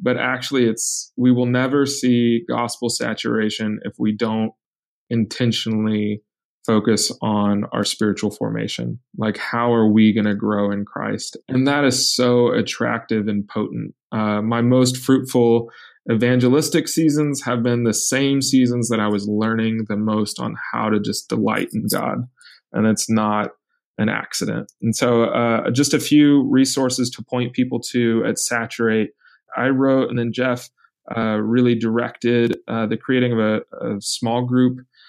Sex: male